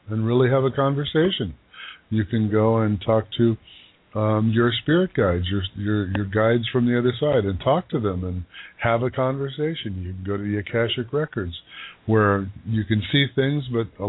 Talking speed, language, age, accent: 190 wpm, English, 50-69, American